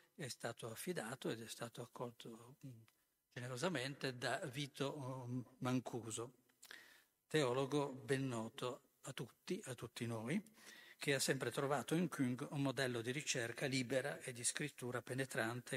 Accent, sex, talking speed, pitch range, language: native, male, 130 wpm, 115-140 Hz, Italian